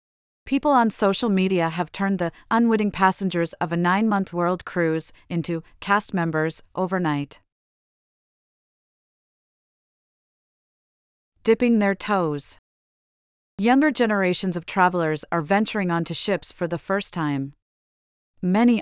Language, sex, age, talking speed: English, female, 30-49, 110 wpm